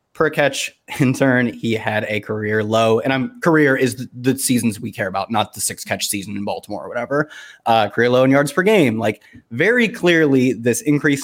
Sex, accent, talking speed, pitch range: male, American, 215 wpm, 115-145 Hz